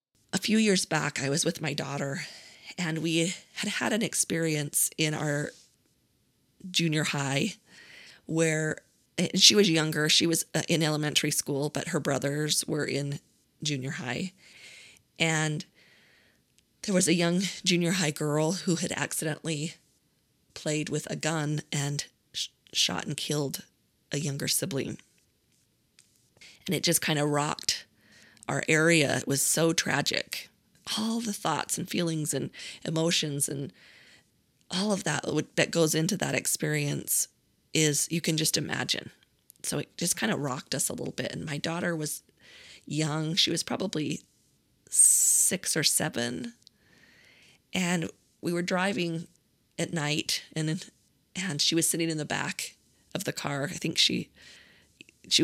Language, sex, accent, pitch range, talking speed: English, female, American, 150-170 Hz, 145 wpm